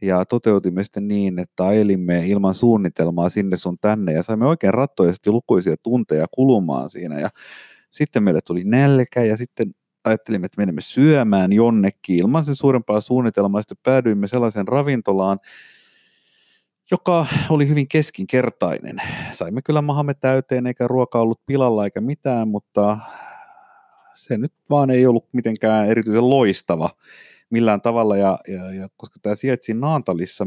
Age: 30-49